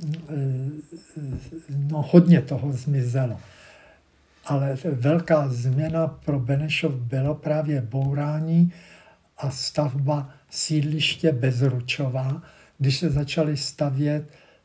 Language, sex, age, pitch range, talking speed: Czech, male, 60-79, 135-155 Hz, 80 wpm